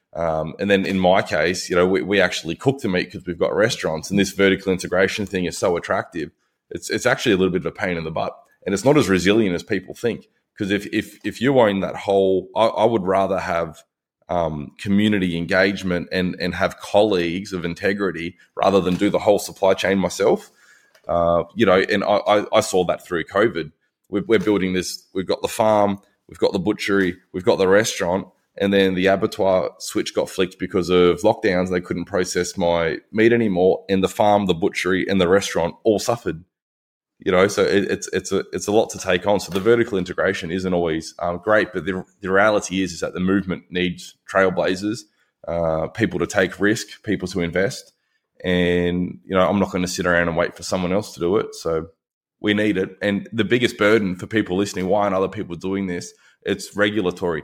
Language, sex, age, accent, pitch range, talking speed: English, male, 20-39, Australian, 90-100 Hz, 215 wpm